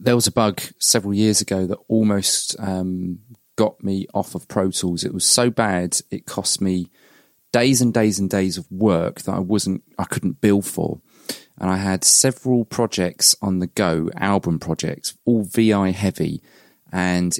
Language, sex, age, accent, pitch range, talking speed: English, male, 30-49, British, 90-115 Hz, 175 wpm